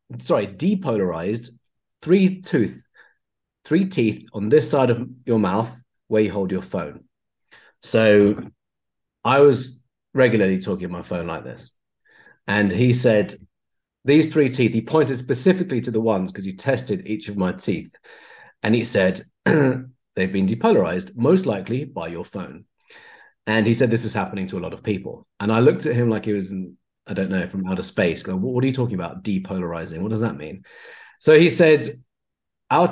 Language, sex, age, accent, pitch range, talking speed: English, male, 30-49, British, 100-135 Hz, 180 wpm